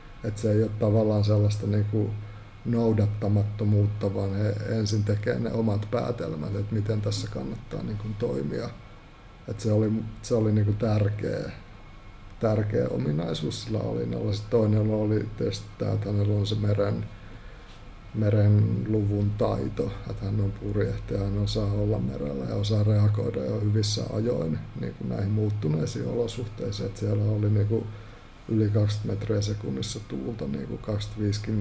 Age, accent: 50-69, native